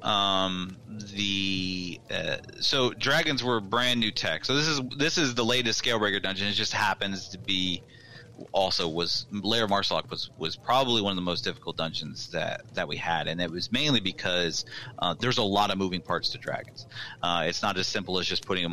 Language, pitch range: English, 90-115 Hz